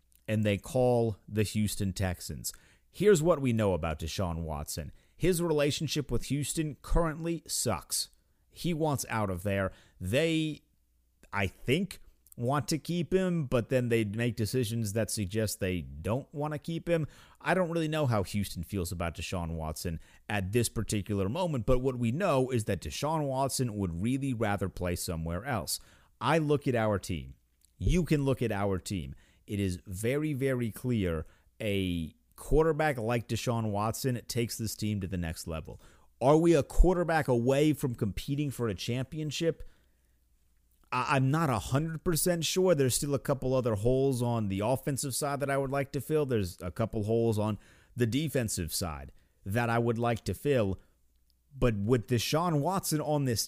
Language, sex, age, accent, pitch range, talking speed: English, male, 30-49, American, 95-145 Hz, 170 wpm